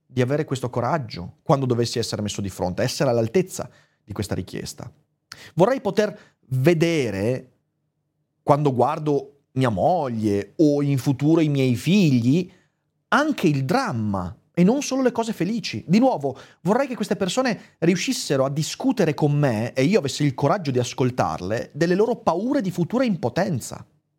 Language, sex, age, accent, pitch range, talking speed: Italian, male, 30-49, native, 135-180 Hz, 150 wpm